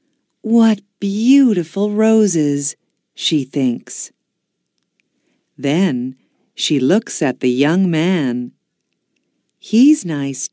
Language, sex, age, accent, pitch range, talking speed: Russian, female, 50-69, American, 130-205 Hz, 80 wpm